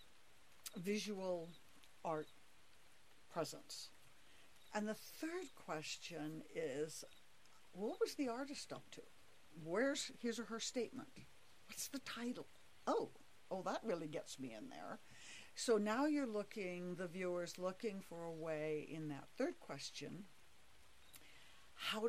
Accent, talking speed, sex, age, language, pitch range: American, 120 wpm, female, 60-79, English, 155-225 Hz